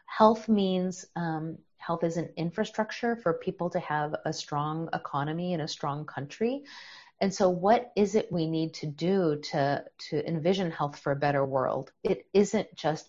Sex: female